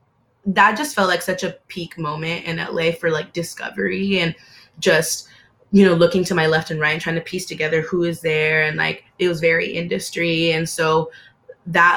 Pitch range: 160-180 Hz